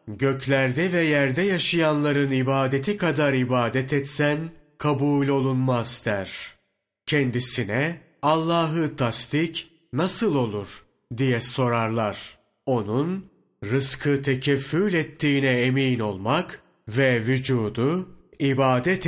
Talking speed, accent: 85 wpm, native